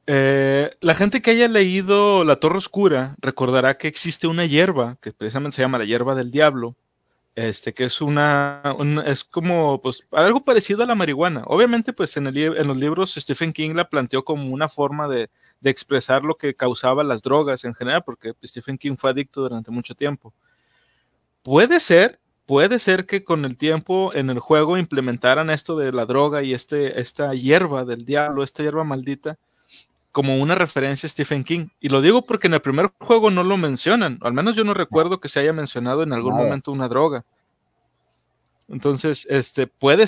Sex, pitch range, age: male, 130-165 Hz, 30-49